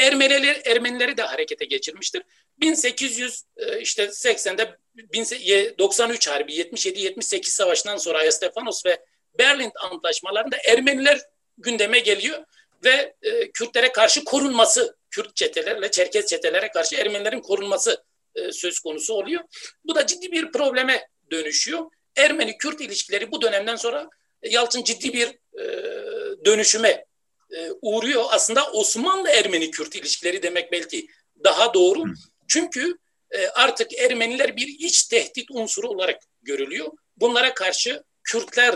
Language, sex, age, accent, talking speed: Turkish, male, 60-79, native, 110 wpm